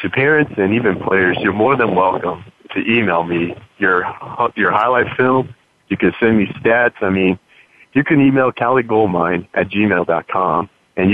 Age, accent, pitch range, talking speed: 40-59, American, 90-110 Hz, 180 wpm